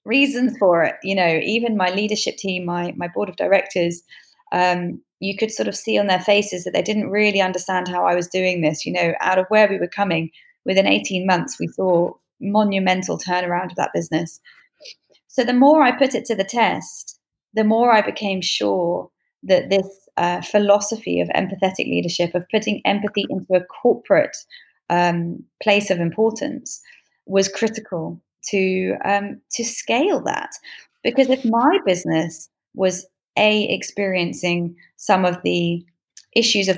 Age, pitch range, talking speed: 20-39, 175-210 Hz, 165 wpm